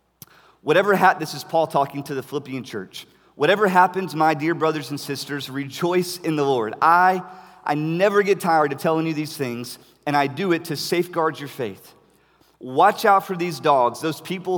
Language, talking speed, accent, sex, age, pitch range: English, 190 wpm, American, male, 40-59, 150-185 Hz